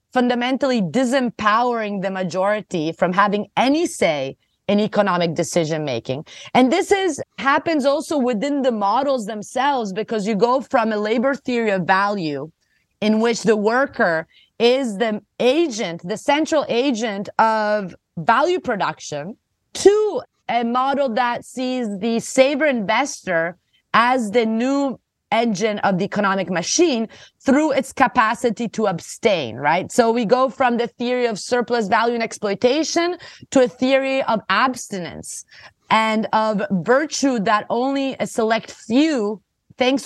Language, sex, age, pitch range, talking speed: English, female, 30-49, 210-270 Hz, 135 wpm